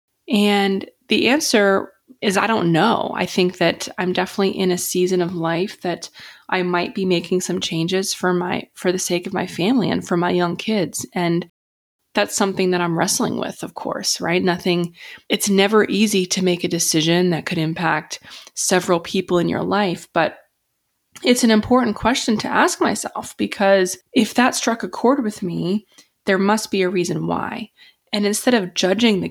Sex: female